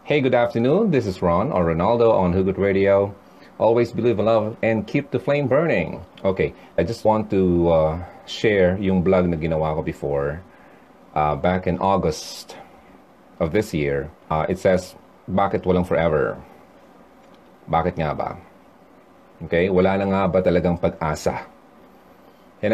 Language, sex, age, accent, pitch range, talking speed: Filipino, male, 30-49, native, 90-115 Hz, 150 wpm